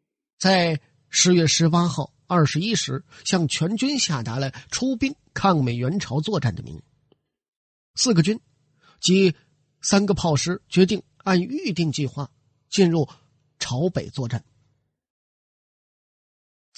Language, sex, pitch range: Chinese, male, 145-195 Hz